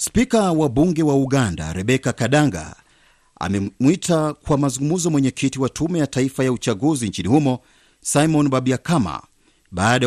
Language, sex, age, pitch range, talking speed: Swahili, male, 50-69, 120-145 Hz, 130 wpm